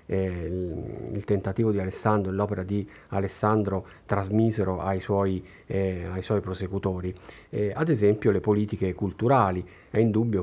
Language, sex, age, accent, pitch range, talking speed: Italian, male, 40-59, native, 95-110 Hz, 120 wpm